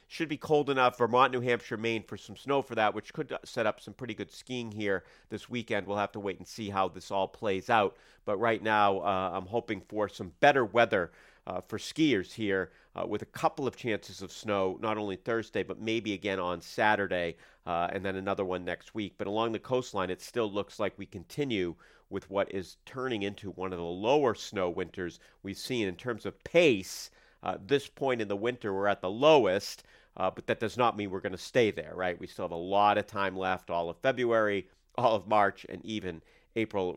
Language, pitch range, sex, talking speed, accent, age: English, 95-115 Hz, male, 225 wpm, American, 40-59